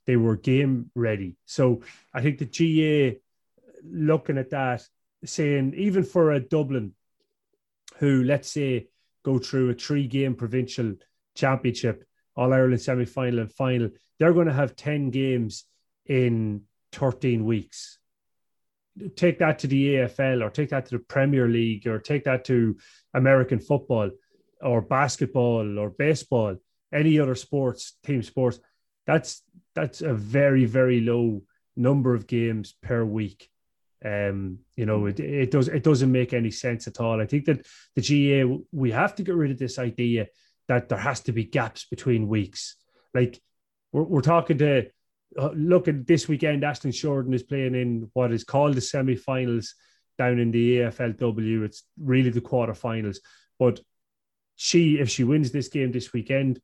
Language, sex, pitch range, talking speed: English, male, 120-140 Hz, 155 wpm